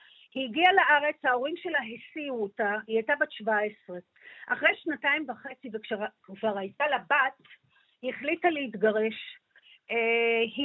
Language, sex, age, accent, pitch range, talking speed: Hebrew, female, 50-69, native, 225-305 Hz, 125 wpm